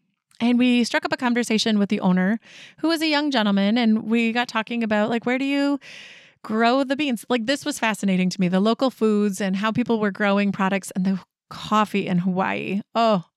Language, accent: English, American